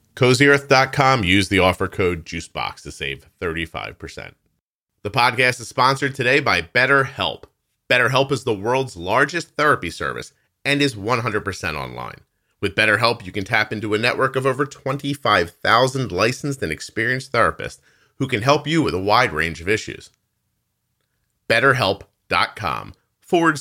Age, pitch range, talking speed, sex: 40-59, 100-140 Hz, 135 wpm, male